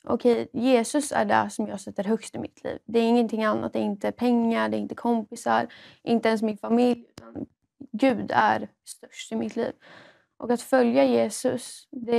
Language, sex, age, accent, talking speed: English, female, 20-39, Swedish, 195 wpm